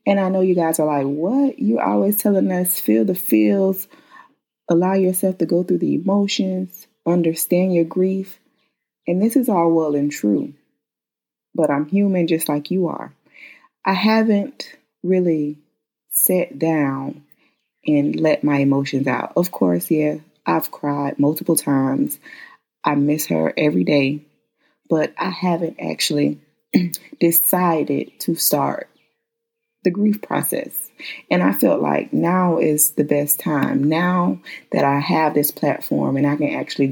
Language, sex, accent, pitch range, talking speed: English, female, American, 145-185 Hz, 145 wpm